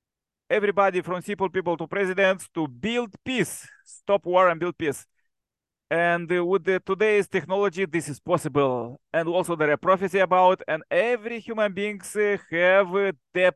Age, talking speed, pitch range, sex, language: 40-59, 150 wpm, 170-195 Hz, male, English